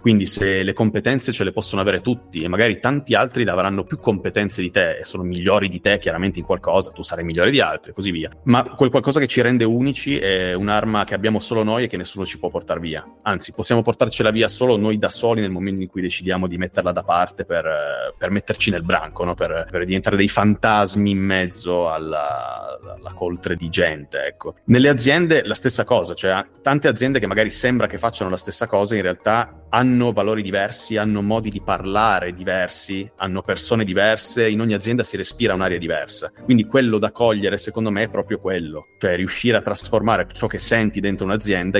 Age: 30-49